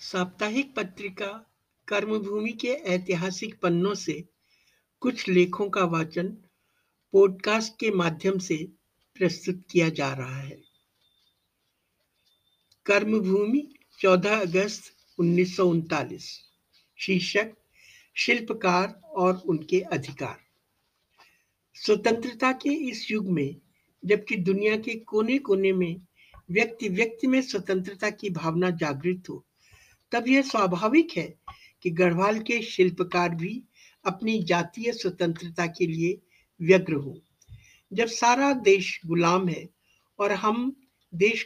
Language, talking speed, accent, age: Hindi, 105 wpm, native, 60-79